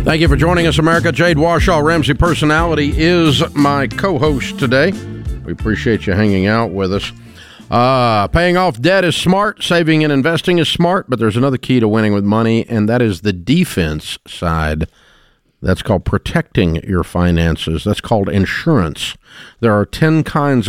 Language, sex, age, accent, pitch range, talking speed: English, male, 50-69, American, 105-155 Hz, 170 wpm